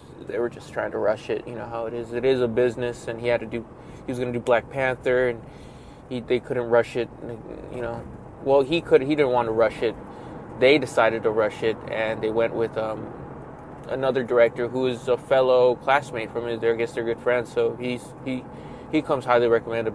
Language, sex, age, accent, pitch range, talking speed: English, male, 20-39, American, 115-150 Hz, 230 wpm